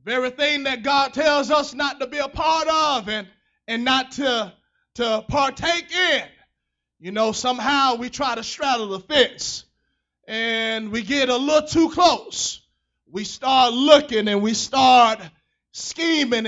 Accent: American